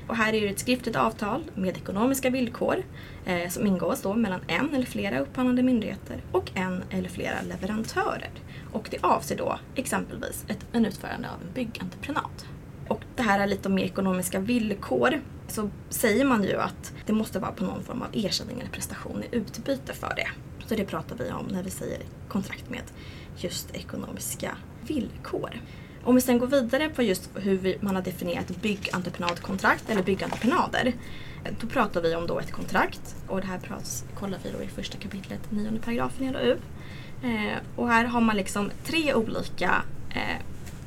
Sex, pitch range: female, 190-245 Hz